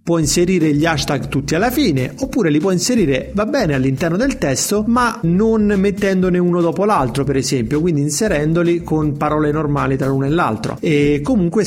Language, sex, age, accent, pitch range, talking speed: Italian, male, 30-49, native, 145-185 Hz, 180 wpm